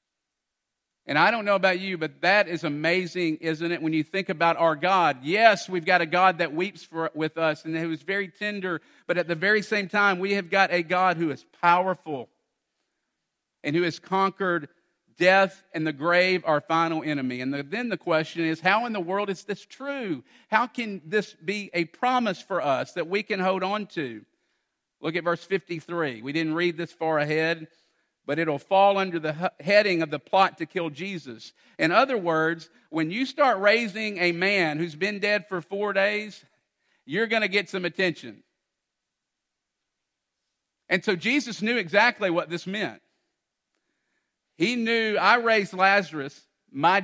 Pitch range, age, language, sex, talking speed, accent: 160-200 Hz, 50-69, English, male, 180 wpm, American